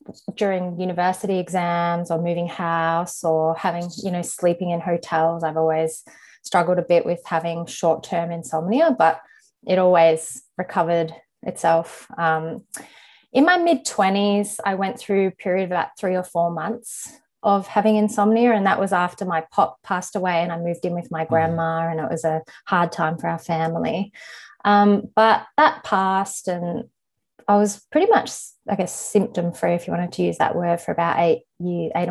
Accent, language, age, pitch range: Australian, English, 20-39, 165-195 Hz